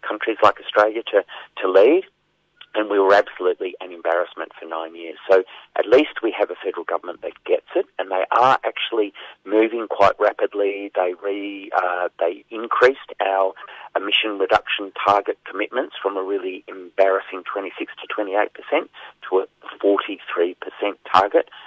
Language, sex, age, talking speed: English, male, 50-69, 145 wpm